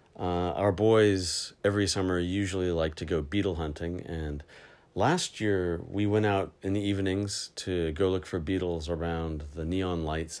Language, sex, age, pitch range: Japanese, male, 40-59, 80-95 Hz